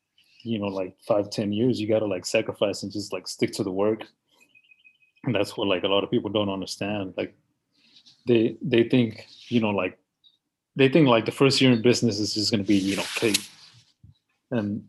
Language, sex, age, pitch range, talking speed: English, male, 20-39, 100-120 Hz, 210 wpm